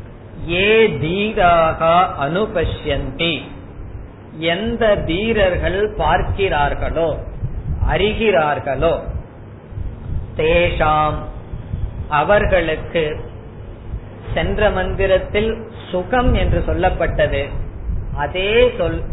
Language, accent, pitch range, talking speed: Tamil, native, 135-195 Hz, 45 wpm